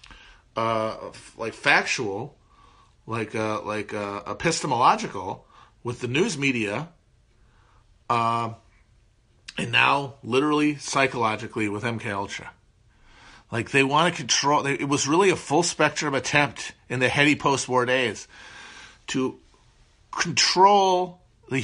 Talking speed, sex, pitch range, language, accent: 110 wpm, male, 115-150 Hz, English, American